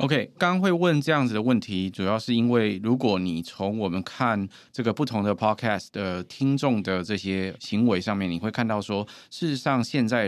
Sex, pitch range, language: male, 95-115 Hz, Chinese